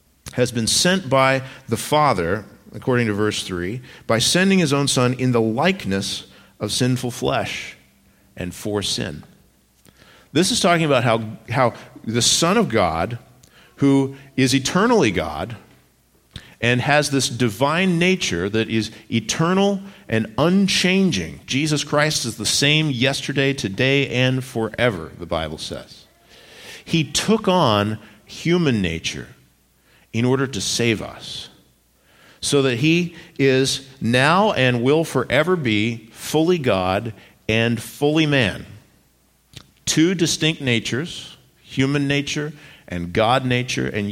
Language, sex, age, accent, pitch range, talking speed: English, male, 50-69, American, 110-145 Hz, 125 wpm